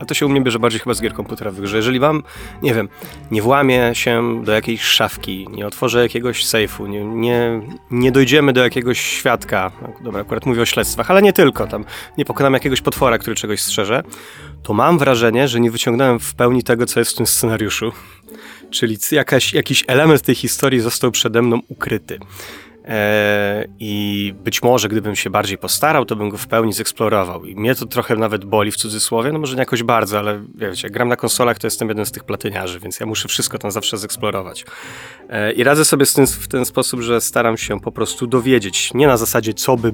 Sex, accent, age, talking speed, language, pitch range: male, native, 20-39, 205 wpm, Polish, 105-125 Hz